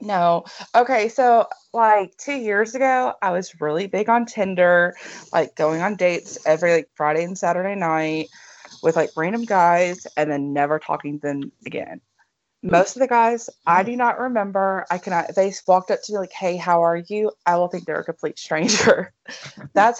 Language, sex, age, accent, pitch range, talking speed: English, female, 20-39, American, 170-230 Hz, 185 wpm